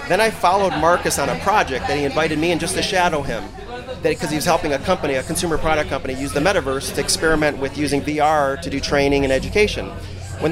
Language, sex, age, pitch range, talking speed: English, male, 30-49, 150-195 Hz, 230 wpm